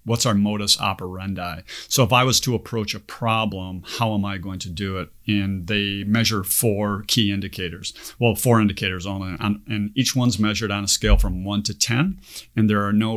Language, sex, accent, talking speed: English, male, American, 200 wpm